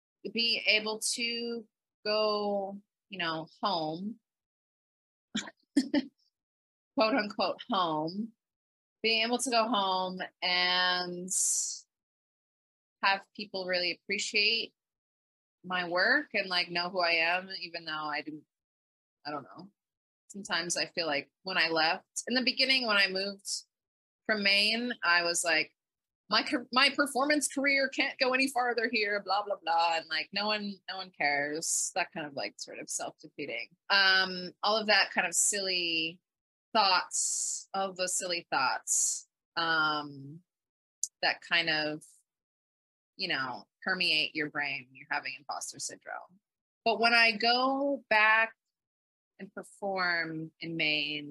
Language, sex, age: English, female, 20-39